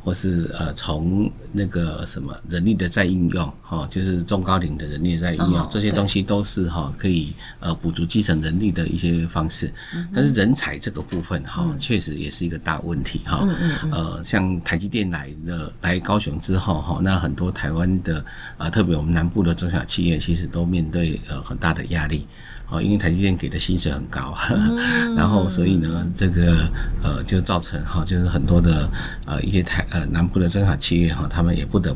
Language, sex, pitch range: Chinese, male, 80-95 Hz